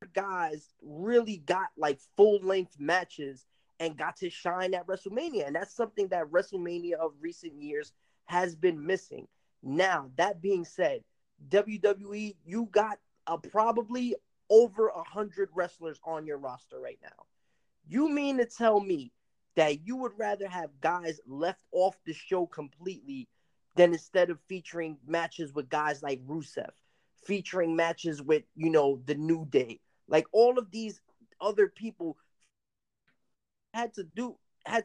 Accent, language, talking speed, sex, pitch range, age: American, English, 145 wpm, male, 165-220 Hz, 20-39